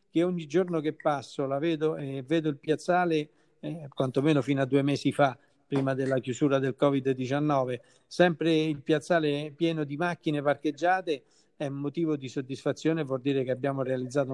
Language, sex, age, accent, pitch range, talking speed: Italian, male, 50-69, native, 135-160 Hz, 170 wpm